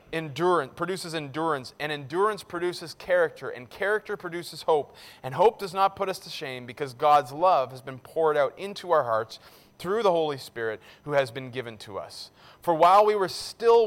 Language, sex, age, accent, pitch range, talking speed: English, male, 30-49, American, 145-190 Hz, 190 wpm